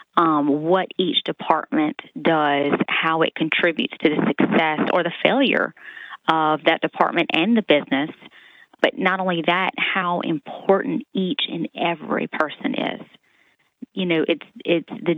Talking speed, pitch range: 140 wpm, 170-220 Hz